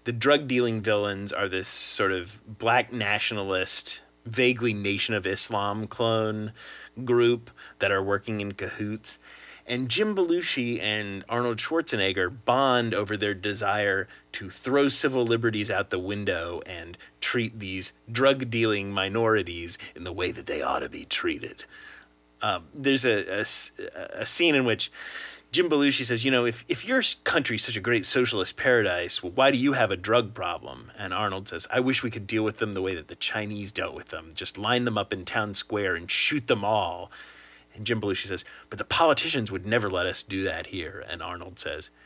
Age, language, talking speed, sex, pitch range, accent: 30-49, English, 185 wpm, male, 100-125 Hz, American